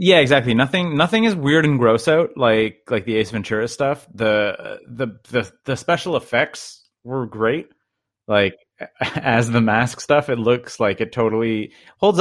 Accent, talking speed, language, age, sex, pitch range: American, 165 wpm, English, 30-49, male, 110-140 Hz